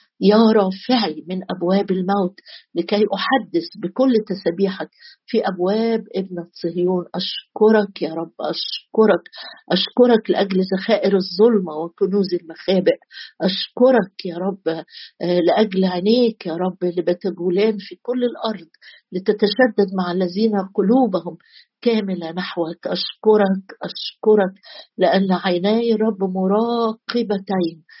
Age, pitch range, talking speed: 50-69, 180-220 Hz, 100 wpm